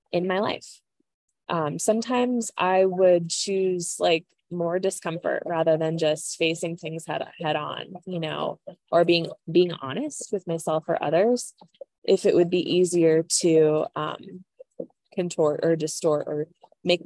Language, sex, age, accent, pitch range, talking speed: English, female, 20-39, American, 165-210 Hz, 145 wpm